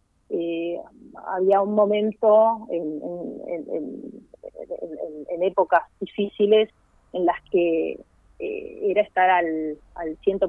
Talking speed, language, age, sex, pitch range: 90 wpm, Spanish, 30-49, female, 170-220 Hz